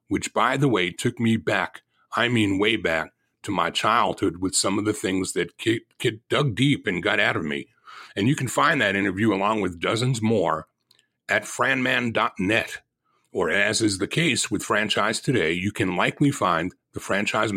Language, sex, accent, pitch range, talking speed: English, male, American, 100-135 Hz, 190 wpm